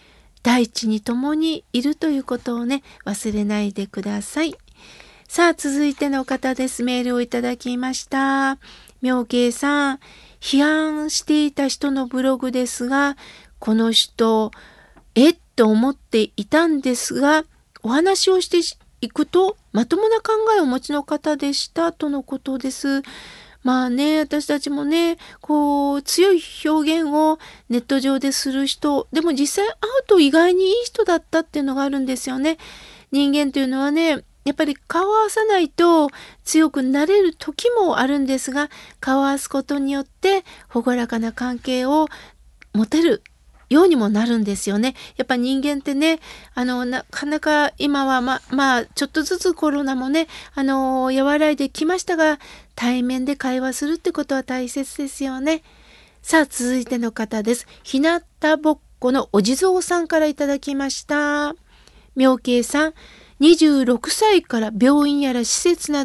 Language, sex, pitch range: Japanese, female, 255-310 Hz